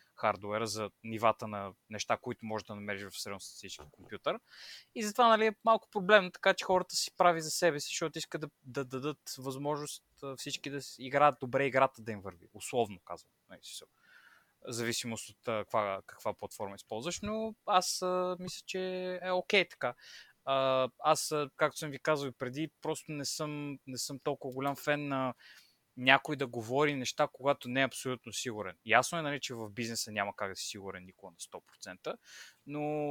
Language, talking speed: Bulgarian, 180 wpm